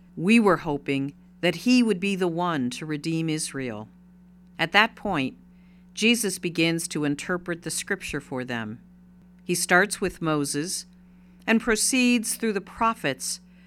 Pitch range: 160-190 Hz